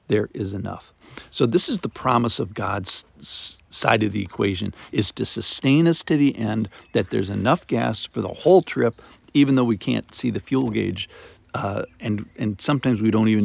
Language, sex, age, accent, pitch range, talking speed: English, male, 50-69, American, 105-125 Hz, 195 wpm